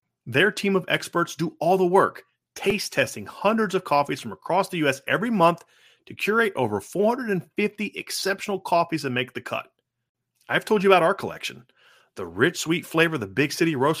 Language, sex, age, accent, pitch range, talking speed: English, male, 30-49, American, 130-190 Hz, 185 wpm